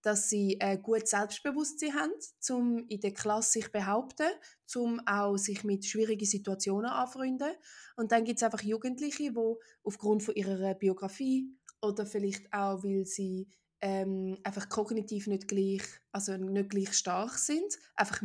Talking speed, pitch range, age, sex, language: 155 wpm, 200-235 Hz, 20-39, female, German